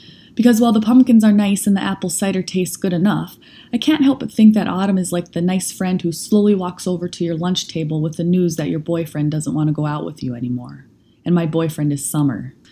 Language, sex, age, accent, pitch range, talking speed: English, female, 20-39, American, 150-185 Hz, 245 wpm